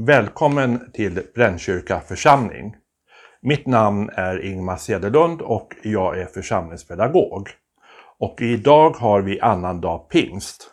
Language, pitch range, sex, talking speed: Swedish, 95-120 Hz, male, 110 wpm